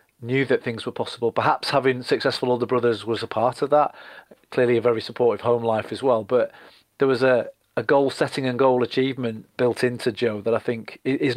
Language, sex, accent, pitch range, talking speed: English, male, British, 115-135 Hz, 210 wpm